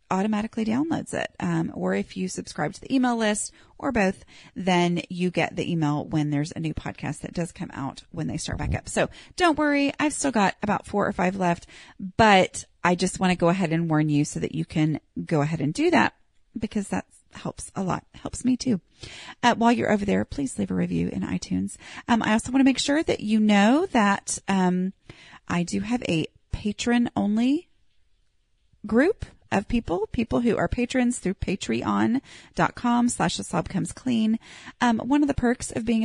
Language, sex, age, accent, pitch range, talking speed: English, female, 30-49, American, 165-230 Hz, 200 wpm